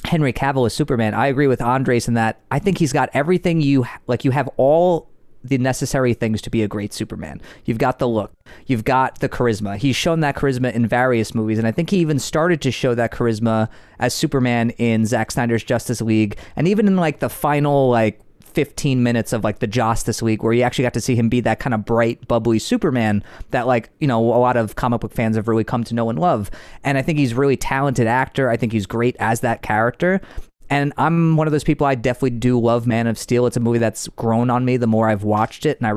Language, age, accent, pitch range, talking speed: English, 30-49, American, 115-140 Hz, 245 wpm